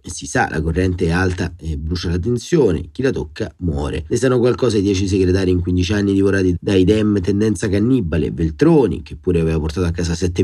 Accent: native